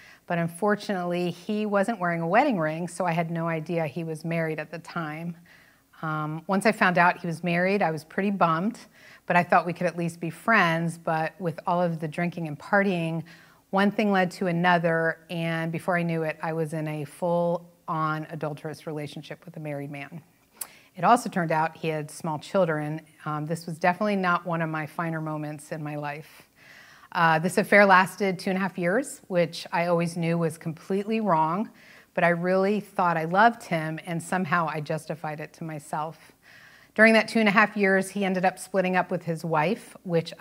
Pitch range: 160-185 Hz